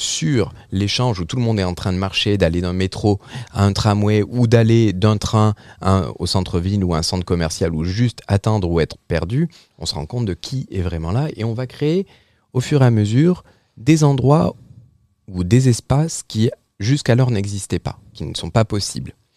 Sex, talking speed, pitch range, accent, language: male, 210 wpm, 90-120 Hz, French, French